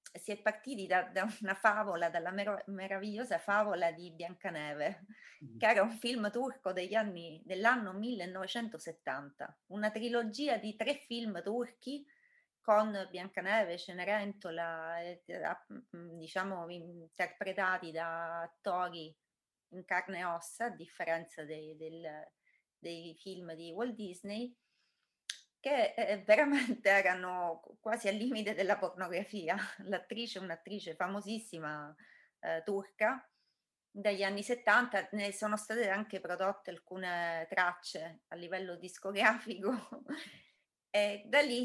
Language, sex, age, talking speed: Italian, female, 30-49, 110 wpm